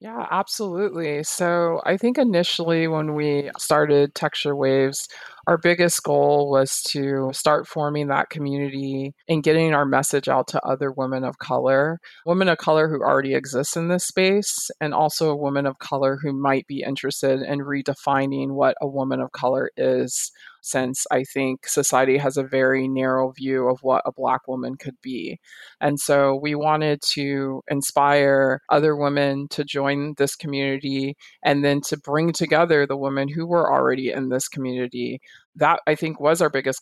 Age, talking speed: 20-39, 170 wpm